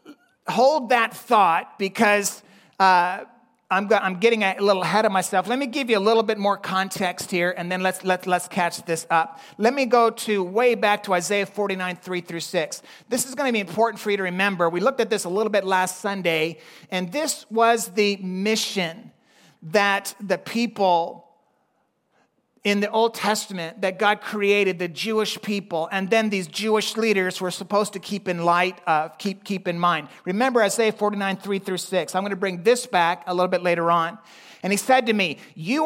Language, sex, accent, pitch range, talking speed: English, male, American, 180-225 Hz, 200 wpm